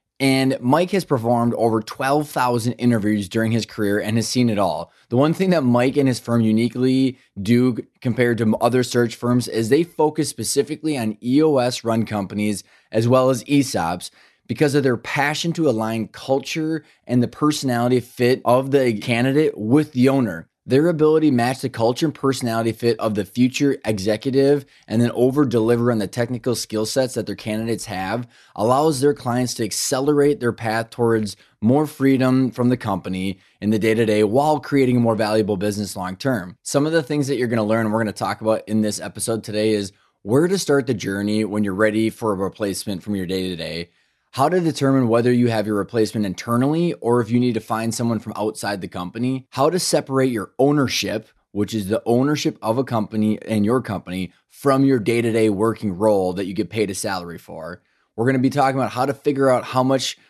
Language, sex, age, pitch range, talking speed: English, male, 20-39, 110-135 Hz, 205 wpm